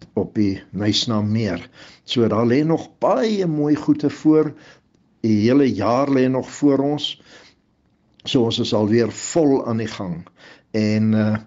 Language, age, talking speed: English, 60-79, 145 wpm